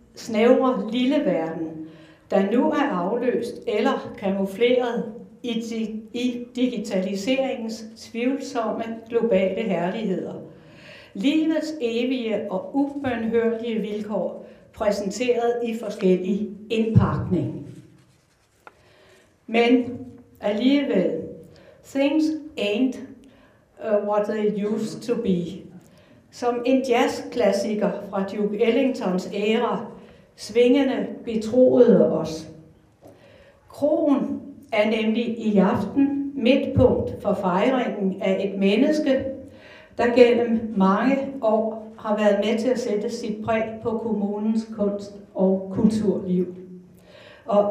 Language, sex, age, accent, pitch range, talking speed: Danish, female, 60-79, native, 200-245 Hz, 90 wpm